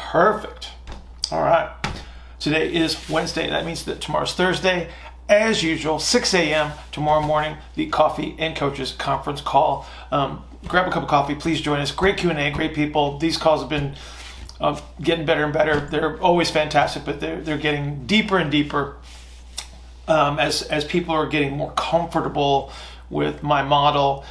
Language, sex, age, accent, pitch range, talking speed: English, male, 40-59, American, 140-160 Hz, 165 wpm